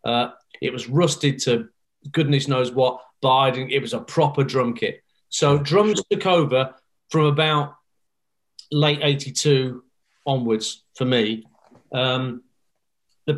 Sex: male